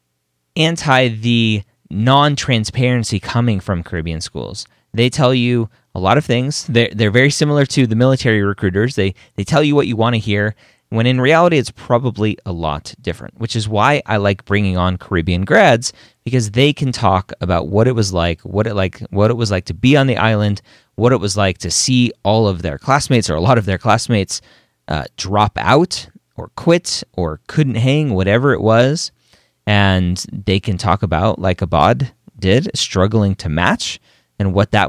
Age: 30-49